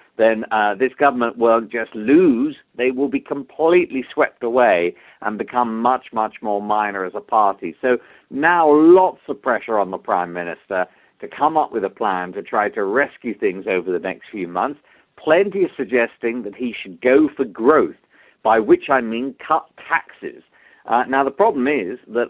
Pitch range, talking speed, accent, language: 115-150 Hz, 185 wpm, British, English